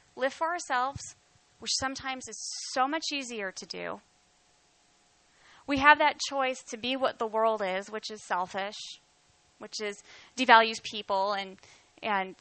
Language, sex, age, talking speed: English, female, 20-39, 145 wpm